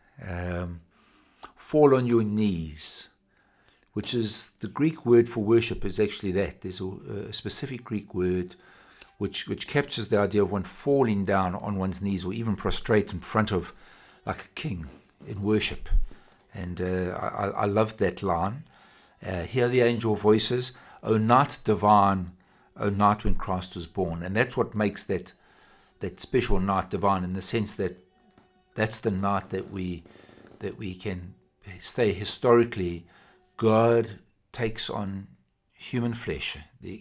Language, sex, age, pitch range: English, male, 60-79, 90-115 Hz